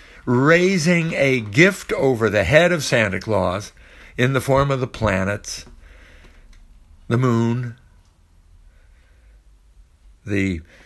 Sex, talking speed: male, 100 wpm